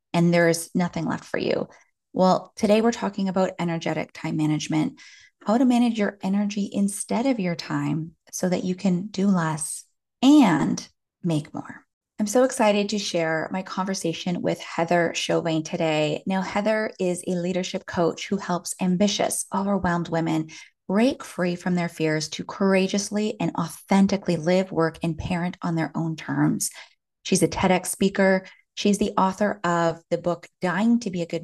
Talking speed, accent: 165 wpm, American